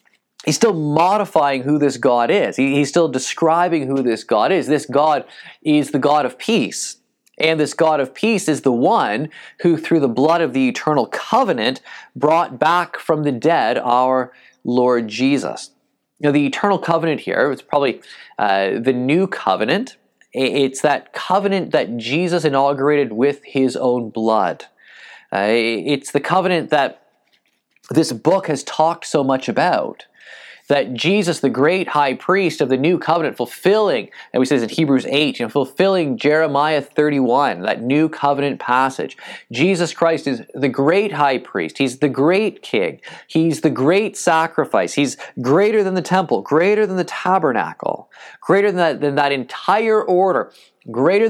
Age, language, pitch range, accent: 20-39, English, 135-175 Hz, American